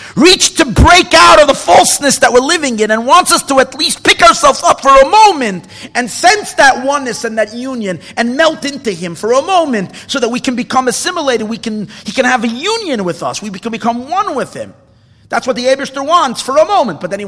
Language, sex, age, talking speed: English, male, 50-69, 240 wpm